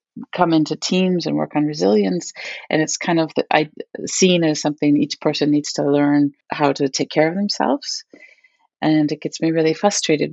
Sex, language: female, English